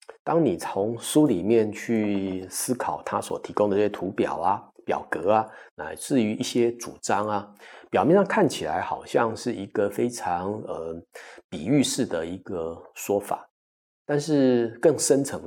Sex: male